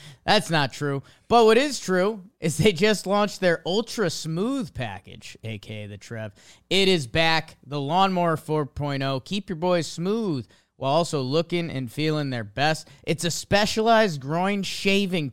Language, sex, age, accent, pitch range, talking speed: English, male, 20-39, American, 120-165 Hz, 155 wpm